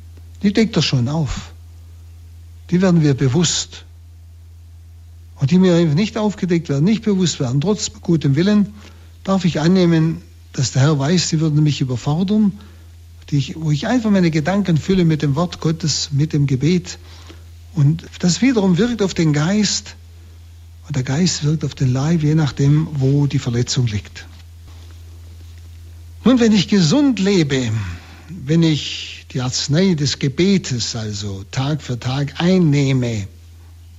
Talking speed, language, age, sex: 145 wpm, German, 60-79, male